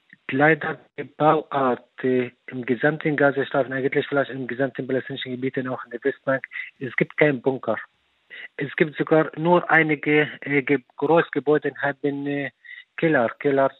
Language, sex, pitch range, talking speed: German, male, 130-150 Hz, 145 wpm